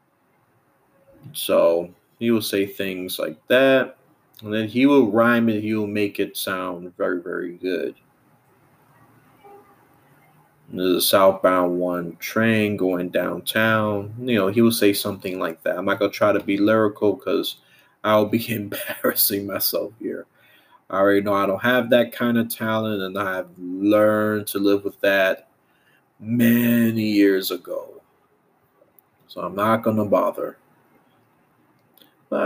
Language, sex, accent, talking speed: English, male, American, 140 wpm